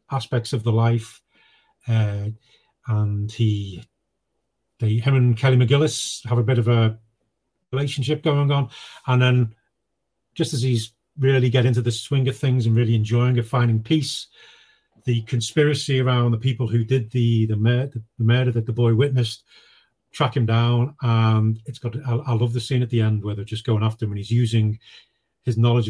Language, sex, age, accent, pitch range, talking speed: English, male, 40-59, British, 115-135 Hz, 185 wpm